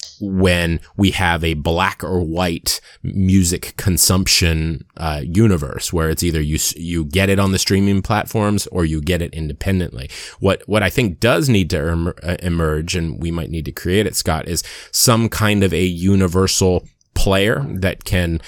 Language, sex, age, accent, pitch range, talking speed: English, male, 20-39, American, 85-100 Hz, 170 wpm